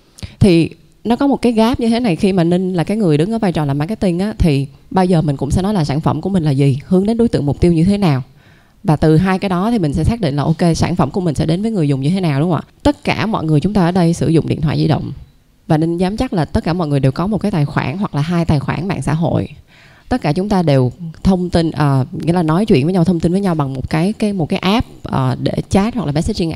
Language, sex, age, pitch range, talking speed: Vietnamese, female, 20-39, 150-195 Hz, 315 wpm